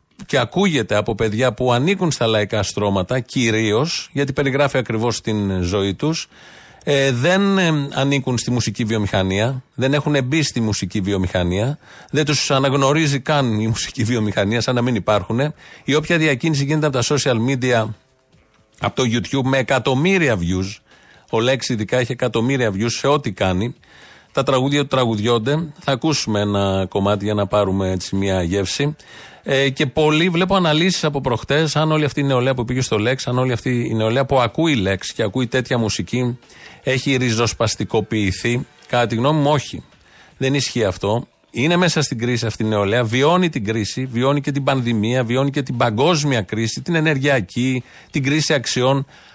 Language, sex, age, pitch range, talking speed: Greek, male, 40-59, 110-145 Hz, 165 wpm